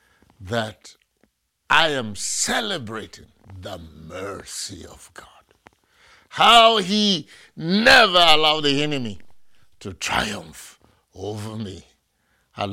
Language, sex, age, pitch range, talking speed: English, male, 60-79, 105-175 Hz, 90 wpm